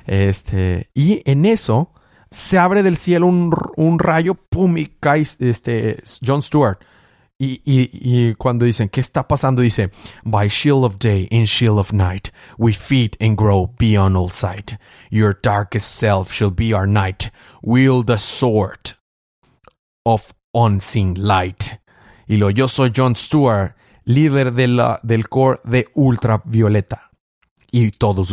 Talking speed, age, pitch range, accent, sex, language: 145 wpm, 30-49, 105-125 Hz, Mexican, male, Spanish